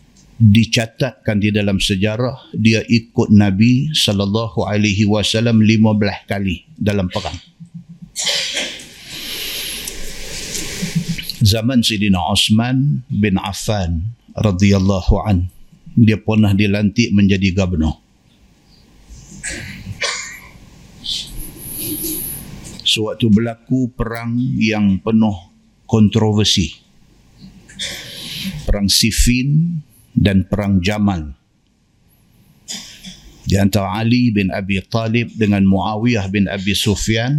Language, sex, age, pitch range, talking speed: Malay, male, 50-69, 100-115 Hz, 80 wpm